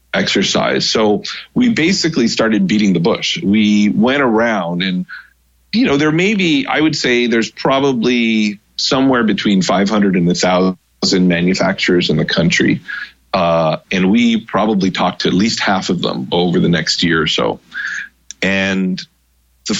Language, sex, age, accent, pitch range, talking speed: English, male, 30-49, American, 95-135 Hz, 150 wpm